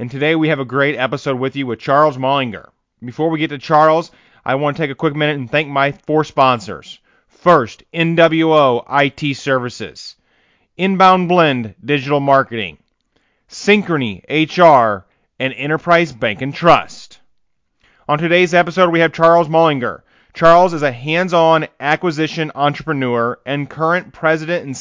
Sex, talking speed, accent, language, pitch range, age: male, 150 wpm, American, English, 135-165 Hz, 30-49